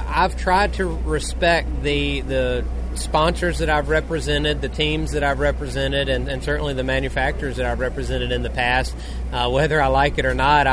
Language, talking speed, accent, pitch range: English, 185 wpm, American, 135-155 Hz